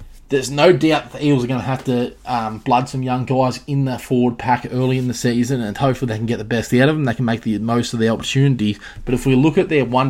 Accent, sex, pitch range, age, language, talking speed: Australian, male, 115-140 Hz, 20-39, English, 285 wpm